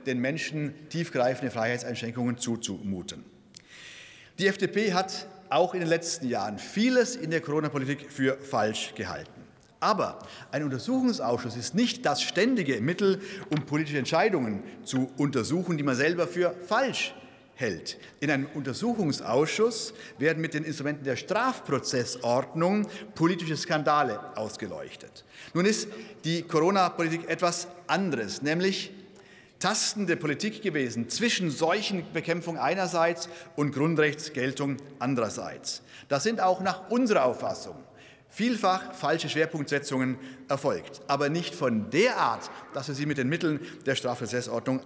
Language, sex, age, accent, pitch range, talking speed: German, male, 40-59, German, 130-180 Hz, 120 wpm